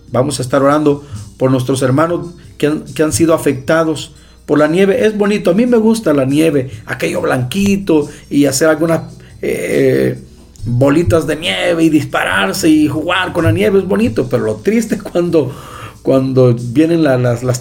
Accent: Mexican